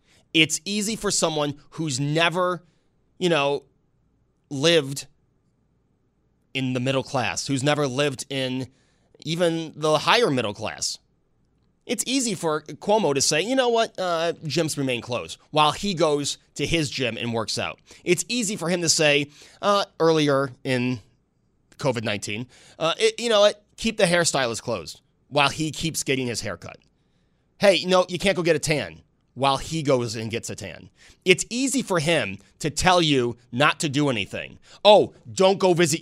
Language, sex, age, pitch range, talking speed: English, male, 30-49, 130-175 Hz, 165 wpm